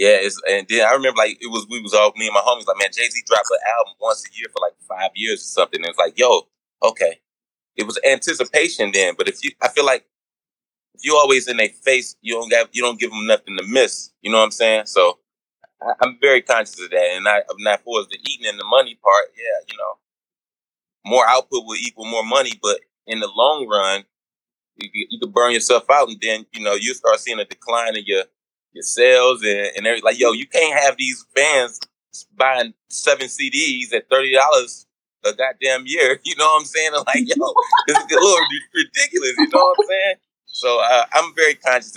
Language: English